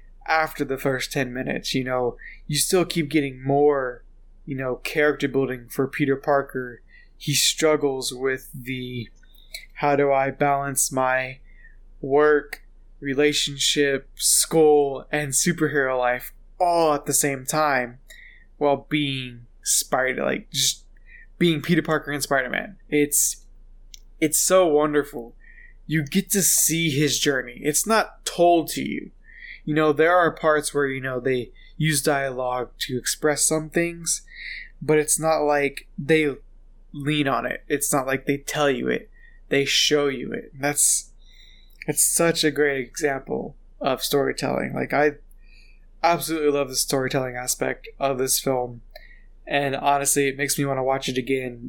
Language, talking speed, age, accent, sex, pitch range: English, 145 wpm, 20-39, American, male, 130-155 Hz